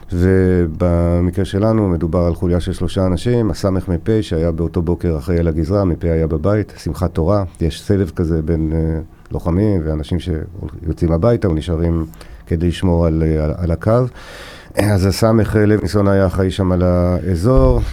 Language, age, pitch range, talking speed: Hebrew, 50-69, 85-95 Hz, 145 wpm